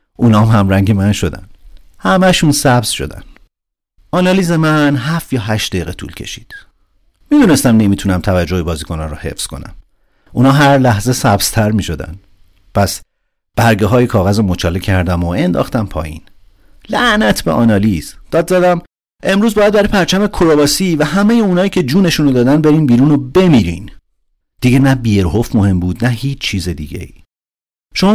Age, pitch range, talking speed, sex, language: 50-69, 90-135 Hz, 145 wpm, male, Persian